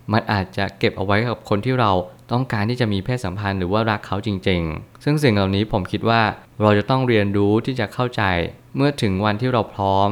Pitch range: 100-120 Hz